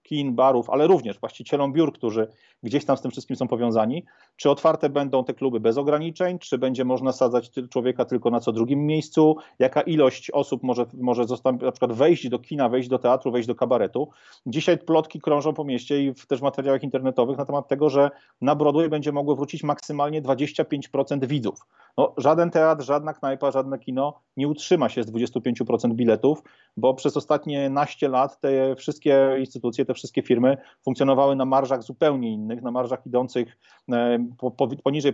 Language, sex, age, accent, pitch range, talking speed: Polish, male, 40-59, native, 125-150 Hz, 180 wpm